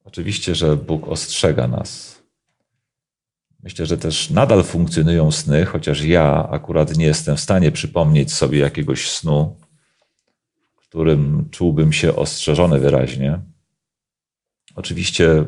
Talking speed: 110 wpm